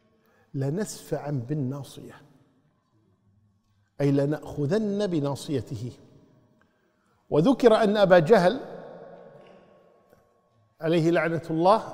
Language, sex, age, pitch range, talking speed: Arabic, male, 50-69, 135-170 Hz, 60 wpm